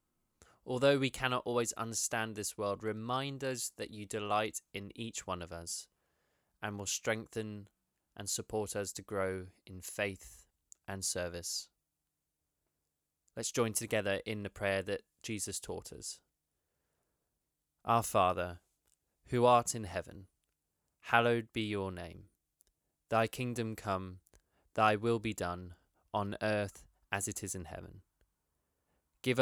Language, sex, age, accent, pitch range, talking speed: English, male, 20-39, British, 90-115 Hz, 130 wpm